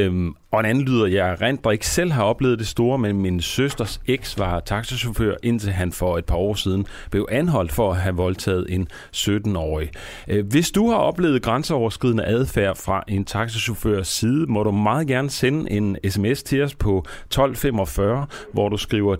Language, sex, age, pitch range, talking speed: Danish, male, 30-49, 95-125 Hz, 180 wpm